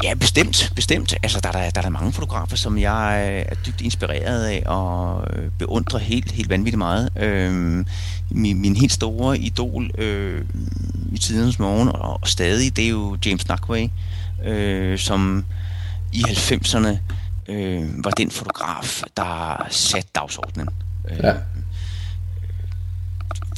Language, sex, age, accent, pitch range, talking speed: Danish, male, 30-49, native, 90-100 Hz, 135 wpm